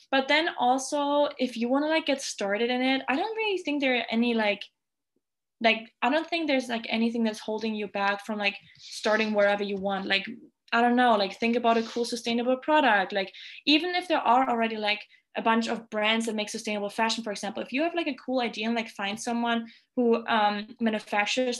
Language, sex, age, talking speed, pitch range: English, female, 20-39, 215 wpm, 210-240 Hz